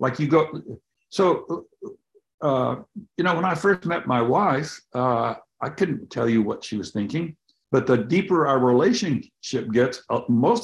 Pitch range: 125-165 Hz